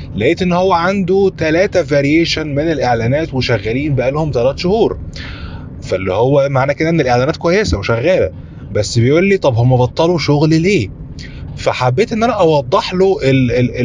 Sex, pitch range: male, 125-180 Hz